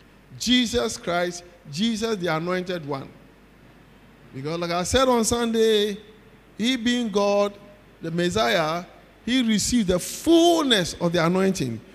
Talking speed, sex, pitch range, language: 120 wpm, male, 175-245 Hz, English